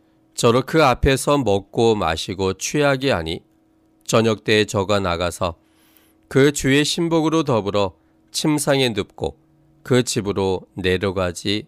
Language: Korean